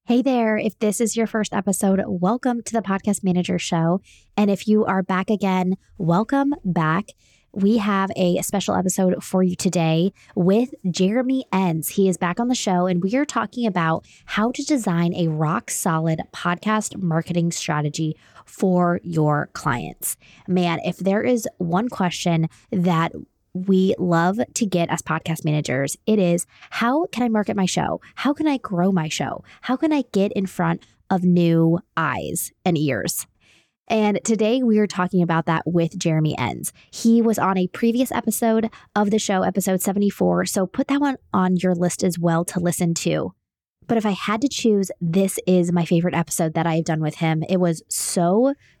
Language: English